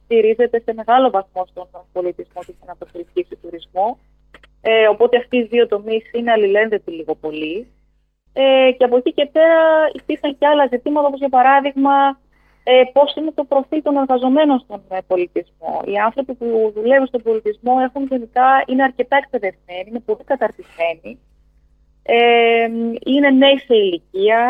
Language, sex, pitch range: Greek, female, 205-260 Hz